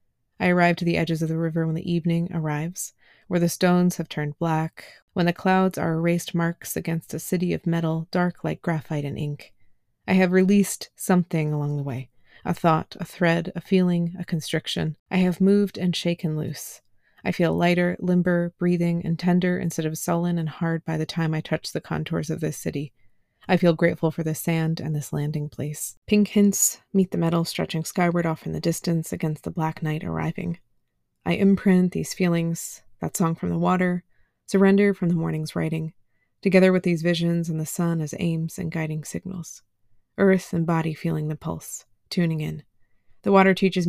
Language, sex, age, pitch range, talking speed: English, female, 30-49, 155-180 Hz, 190 wpm